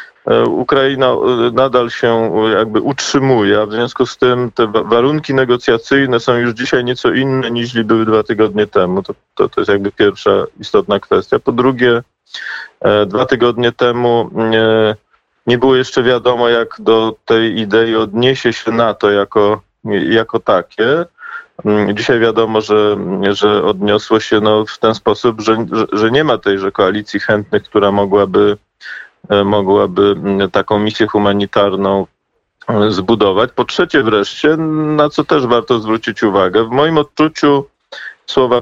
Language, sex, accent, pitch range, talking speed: Polish, male, native, 105-125 Hz, 140 wpm